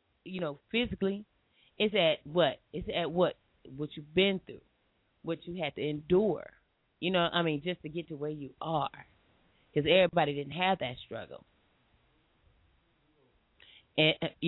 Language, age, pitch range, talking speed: English, 30-49, 145-185 Hz, 150 wpm